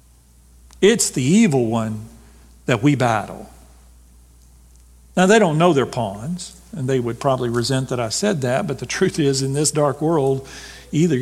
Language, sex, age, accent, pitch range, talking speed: English, male, 50-69, American, 125-160 Hz, 165 wpm